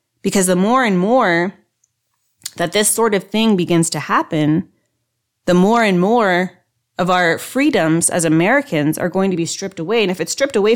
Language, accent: English, American